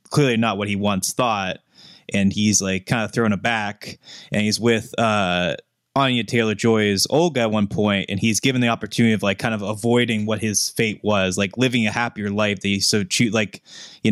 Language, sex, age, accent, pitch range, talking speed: English, male, 20-39, American, 105-125 Hz, 210 wpm